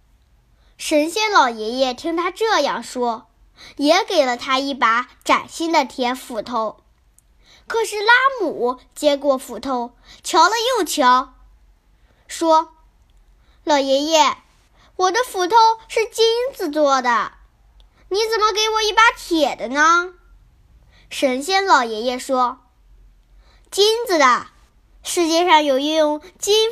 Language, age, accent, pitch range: Chinese, 10-29, native, 255-380 Hz